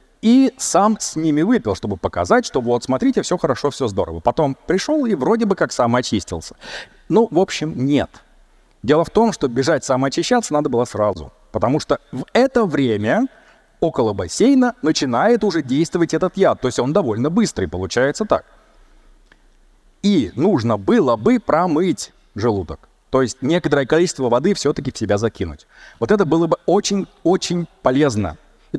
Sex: male